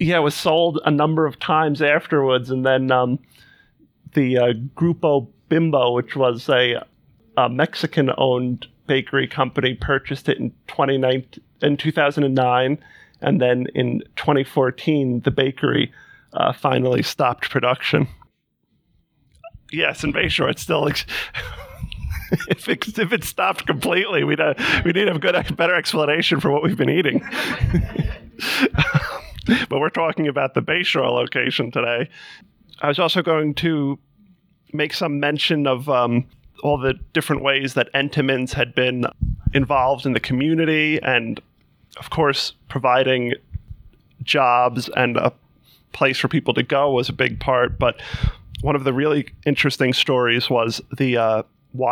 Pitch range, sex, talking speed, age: 125-150 Hz, male, 140 wpm, 40-59